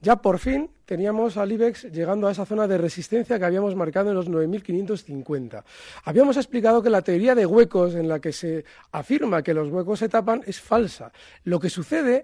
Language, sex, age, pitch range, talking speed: Spanish, male, 40-59, 175-245 Hz, 195 wpm